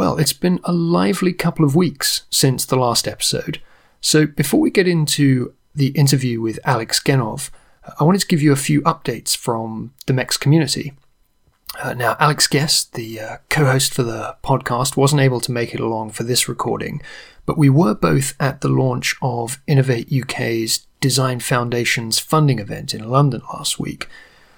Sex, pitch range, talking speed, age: male, 120-155 Hz, 175 wpm, 30-49